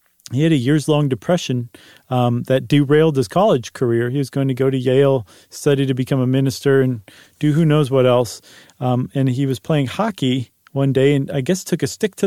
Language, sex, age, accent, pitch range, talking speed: English, male, 40-59, American, 125-150 Hz, 215 wpm